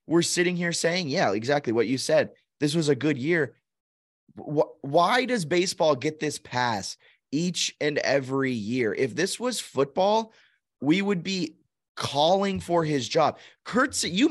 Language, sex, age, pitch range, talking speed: English, male, 20-39, 150-195 Hz, 150 wpm